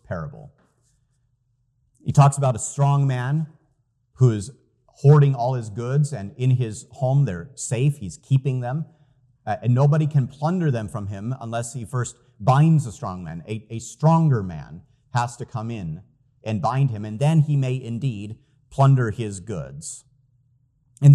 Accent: American